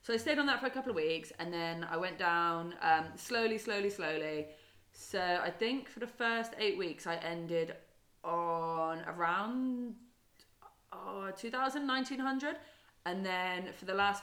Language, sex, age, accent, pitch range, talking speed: English, female, 20-39, British, 160-215 Hz, 160 wpm